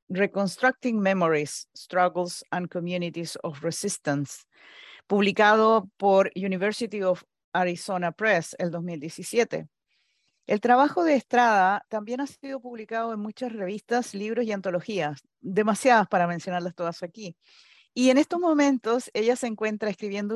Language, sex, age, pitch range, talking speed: English, female, 40-59, 180-225 Hz, 125 wpm